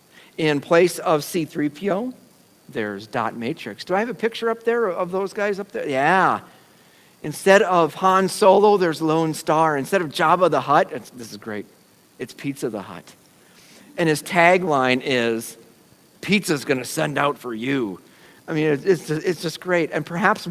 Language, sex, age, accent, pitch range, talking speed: English, male, 50-69, American, 155-215 Hz, 165 wpm